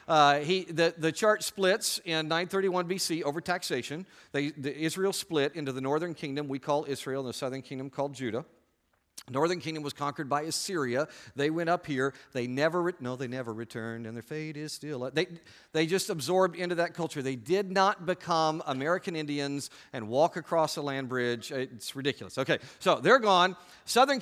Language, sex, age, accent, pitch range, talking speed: English, male, 50-69, American, 130-175 Hz, 180 wpm